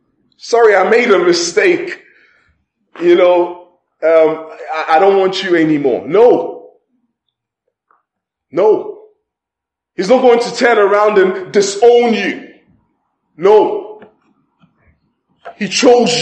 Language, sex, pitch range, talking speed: English, male, 170-285 Hz, 105 wpm